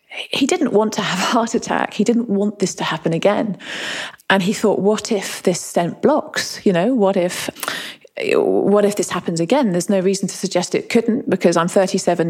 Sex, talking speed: female, 205 wpm